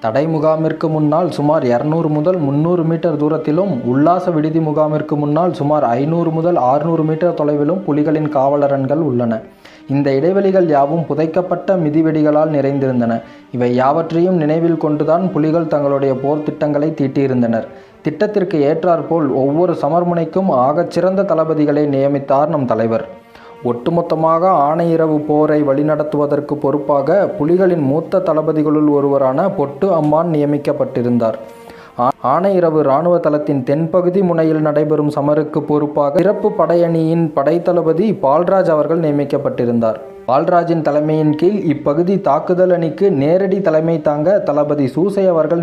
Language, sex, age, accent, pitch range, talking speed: Tamil, male, 20-39, native, 145-170 Hz, 110 wpm